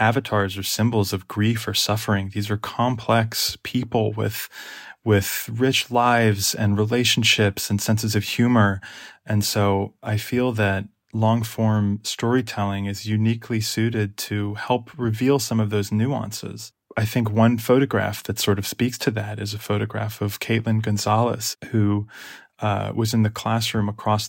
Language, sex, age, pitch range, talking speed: English, male, 20-39, 105-115 Hz, 150 wpm